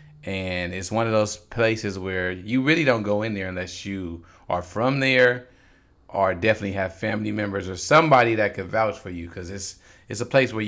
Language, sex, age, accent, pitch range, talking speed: English, male, 30-49, American, 100-125 Hz, 200 wpm